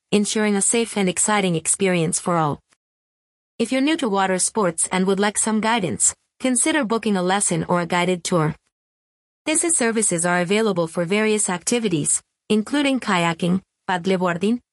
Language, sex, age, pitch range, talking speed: English, female, 30-49, 180-220 Hz, 155 wpm